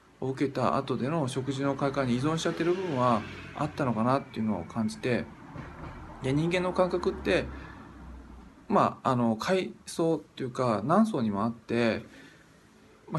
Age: 20-39